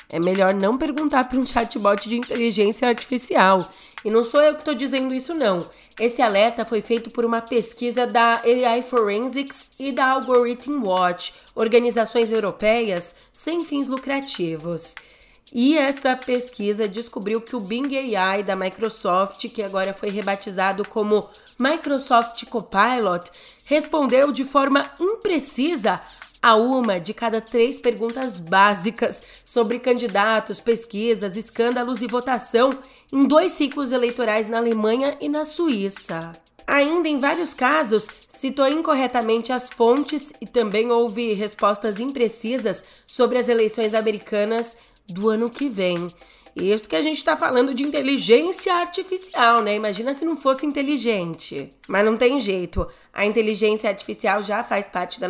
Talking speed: 140 wpm